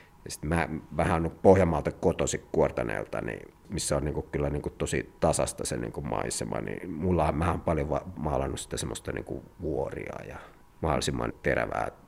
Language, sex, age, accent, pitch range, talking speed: Finnish, male, 50-69, native, 80-95 Hz, 150 wpm